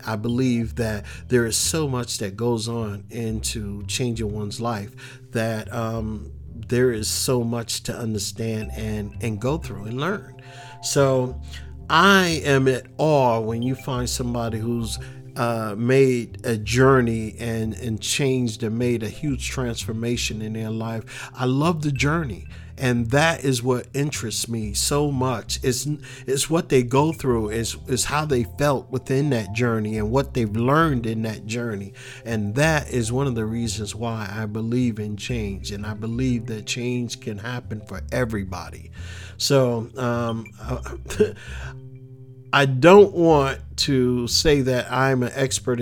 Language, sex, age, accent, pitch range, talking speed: English, male, 50-69, American, 110-130 Hz, 155 wpm